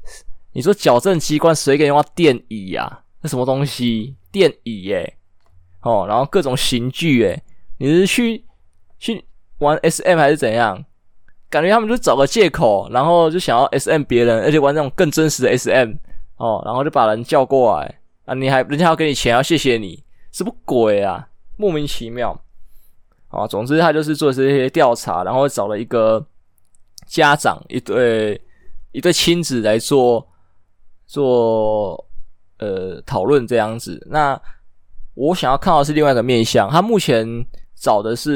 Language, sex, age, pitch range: Chinese, male, 20-39, 110-150 Hz